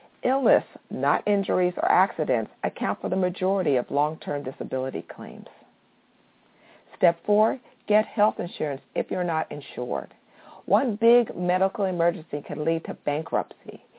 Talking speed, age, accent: 130 wpm, 50-69, American